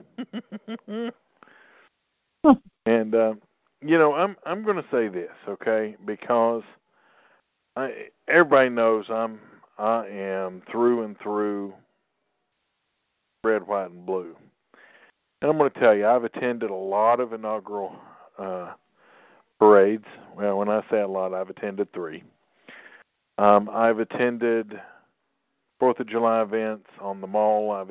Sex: male